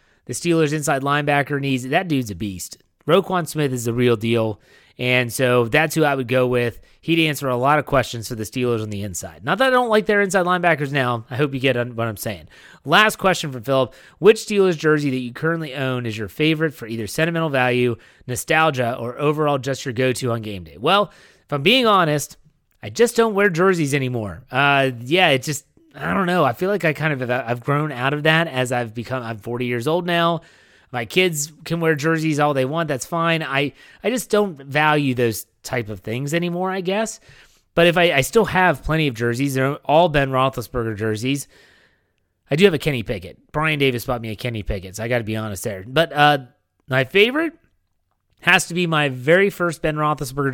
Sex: male